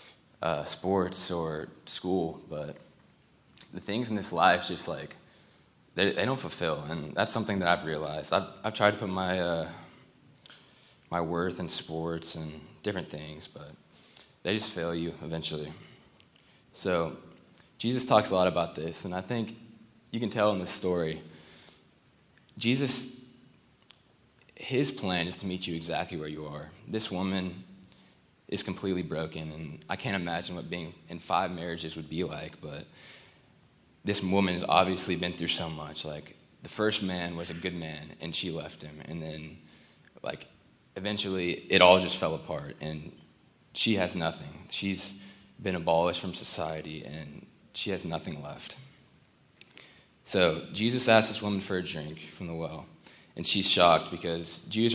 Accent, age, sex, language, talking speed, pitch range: American, 20-39, male, English, 160 wpm, 80-100 Hz